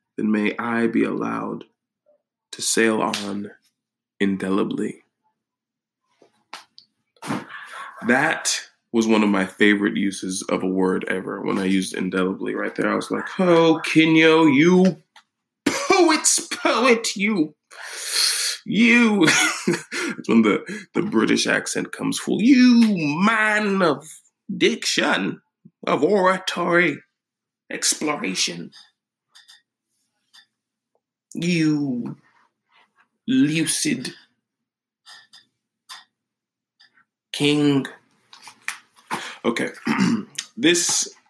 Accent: American